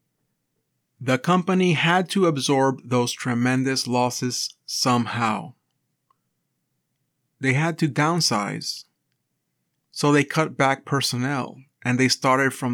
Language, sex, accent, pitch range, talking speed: English, male, American, 120-145 Hz, 105 wpm